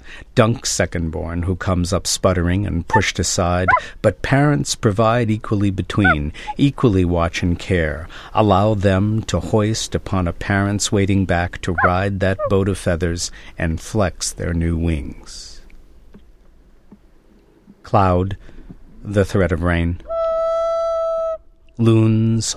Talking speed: 115 wpm